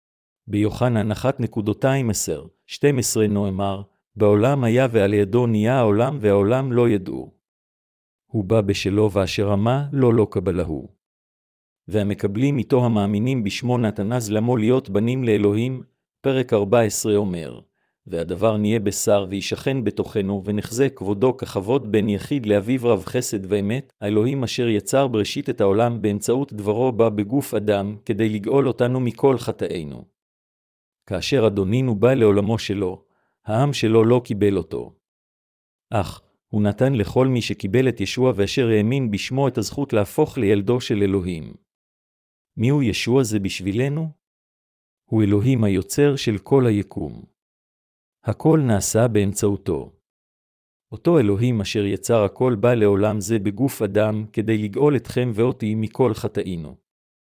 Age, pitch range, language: 50-69, 100-125 Hz, Hebrew